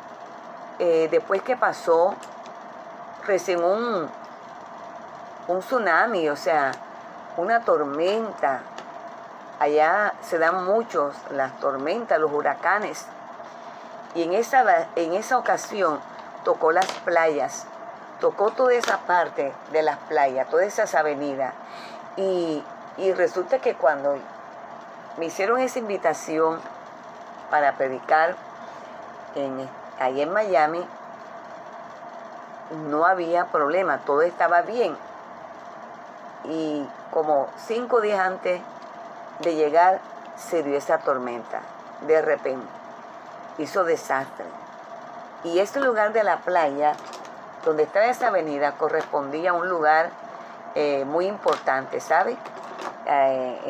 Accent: American